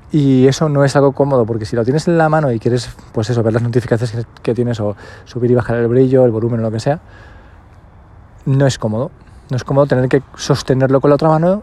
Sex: male